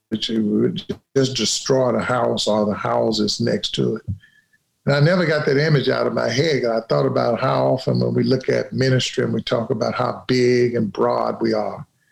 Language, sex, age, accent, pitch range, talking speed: English, male, 50-69, American, 115-135 Hz, 215 wpm